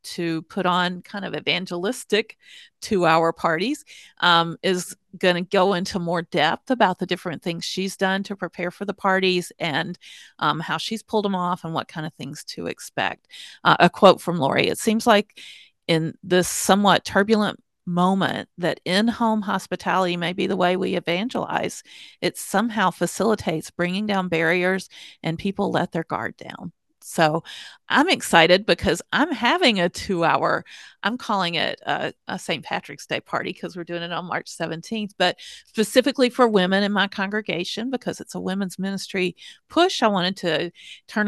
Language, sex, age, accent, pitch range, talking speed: English, female, 40-59, American, 175-220 Hz, 170 wpm